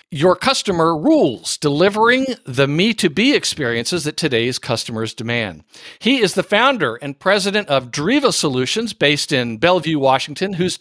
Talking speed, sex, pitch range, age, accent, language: 140 wpm, male, 135-185 Hz, 50-69, American, English